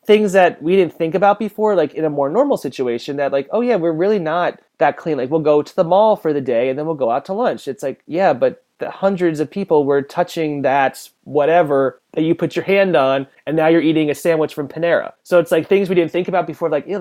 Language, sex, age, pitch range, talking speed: English, male, 30-49, 145-170 Hz, 265 wpm